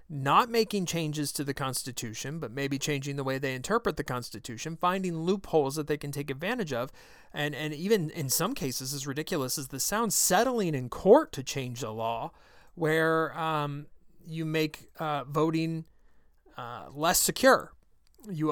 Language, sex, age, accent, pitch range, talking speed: English, male, 30-49, American, 135-170 Hz, 165 wpm